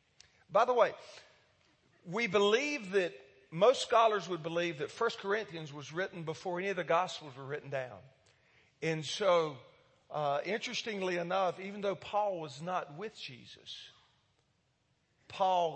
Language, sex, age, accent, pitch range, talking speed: English, male, 50-69, American, 140-190 Hz, 135 wpm